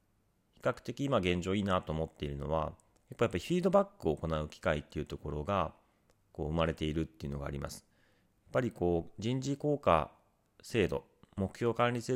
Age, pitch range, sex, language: 40-59, 75-105 Hz, male, Japanese